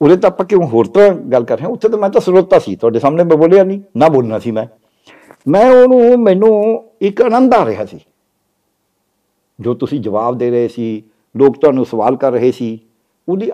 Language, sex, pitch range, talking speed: Punjabi, male, 130-190 Hz, 210 wpm